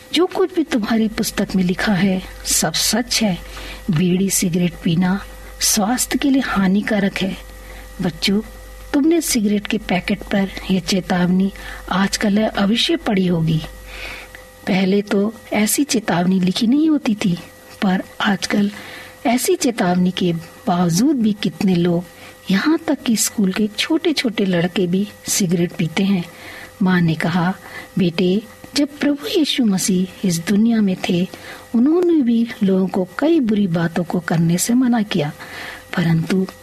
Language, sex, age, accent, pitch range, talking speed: Hindi, female, 50-69, native, 180-245 Hz, 135 wpm